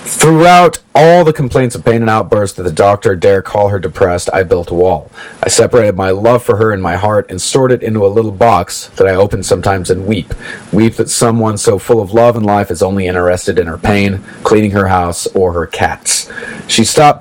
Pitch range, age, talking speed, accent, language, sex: 95-115 Hz, 30-49, 225 wpm, American, English, male